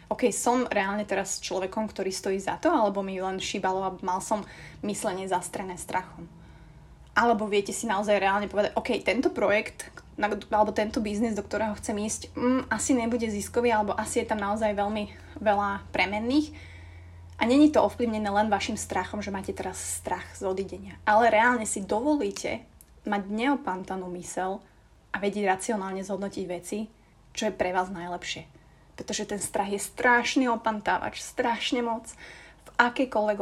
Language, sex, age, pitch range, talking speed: Slovak, female, 20-39, 200-240 Hz, 155 wpm